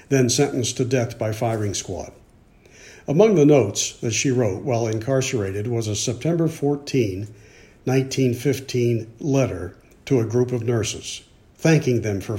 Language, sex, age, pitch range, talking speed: English, male, 60-79, 115-145 Hz, 140 wpm